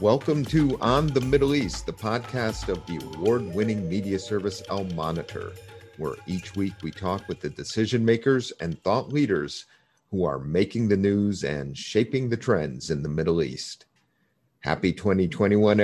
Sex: male